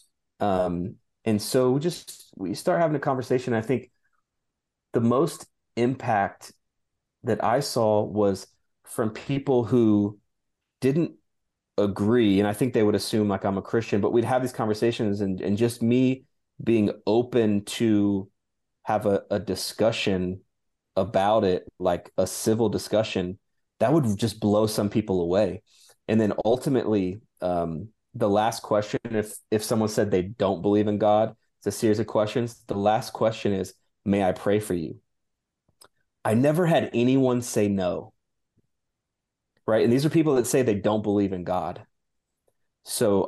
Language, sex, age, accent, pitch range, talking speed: English, male, 30-49, American, 100-120 Hz, 155 wpm